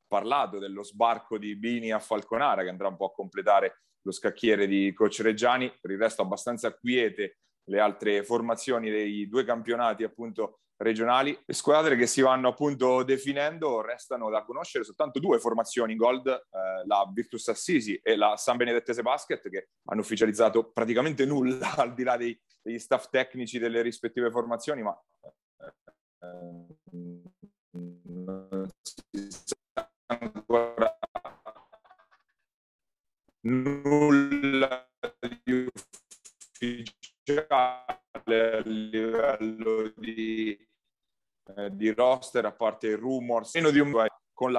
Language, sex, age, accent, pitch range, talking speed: Italian, male, 30-49, native, 110-130 Hz, 125 wpm